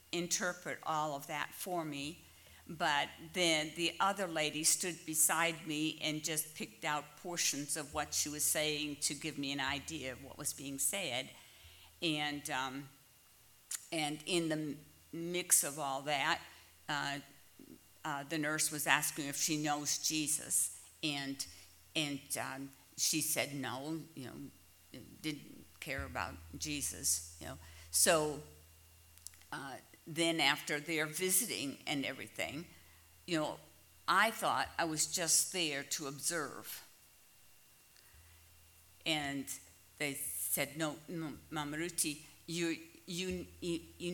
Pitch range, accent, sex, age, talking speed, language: 110-160 Hz, American, female, 50-69, 130 wpm, English